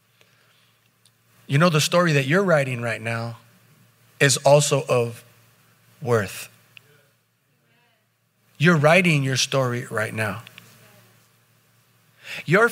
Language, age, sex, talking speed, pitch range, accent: English, 30-49, male, 95 wpm, 120-160 Hz, American